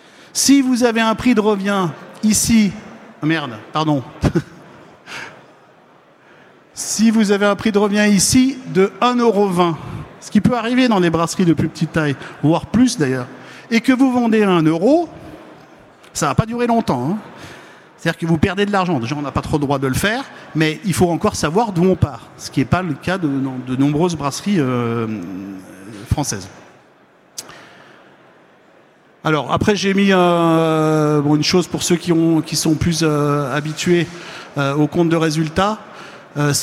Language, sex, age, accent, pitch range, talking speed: French, male, 50-69, French, 155-200 Hz, 150 wpm